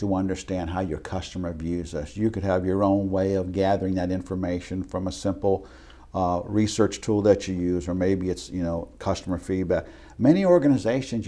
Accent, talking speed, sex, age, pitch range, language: American, 185 wpm, male, 60-79, 90-105 Hz, English